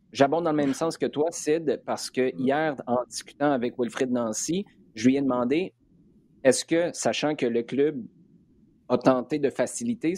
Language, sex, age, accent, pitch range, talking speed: French, male, 30-49, Canadian, 125-145 Hz, 175 wpm